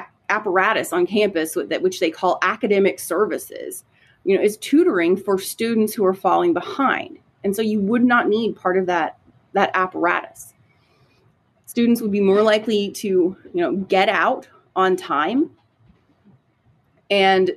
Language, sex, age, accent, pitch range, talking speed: English, female, 30-49, American, 180-230 Hz, 150 wpm